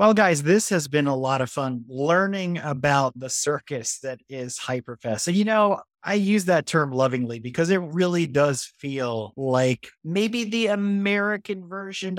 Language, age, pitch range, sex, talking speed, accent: English, 30-49, 125-175 Hz, male, 165 wpm, American